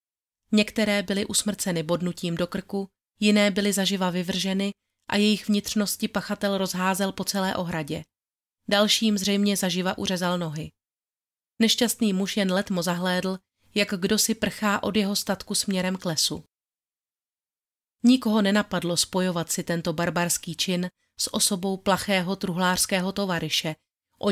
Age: 30-49